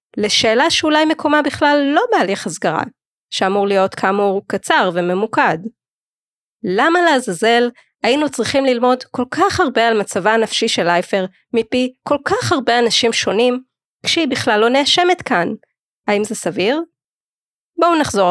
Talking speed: 135 wpm